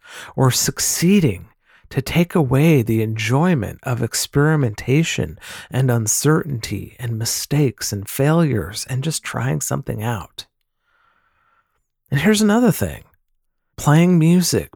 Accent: American